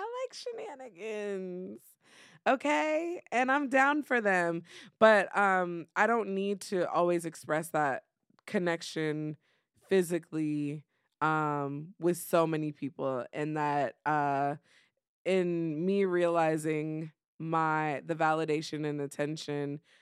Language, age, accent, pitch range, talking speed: English, 20-39, American, 150-195 Hz, 100 wpm